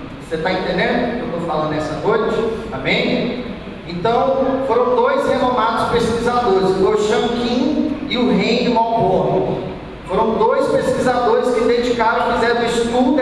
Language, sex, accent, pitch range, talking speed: Portuguese, male, Brazilian, 210-245 Hz, 140 wpm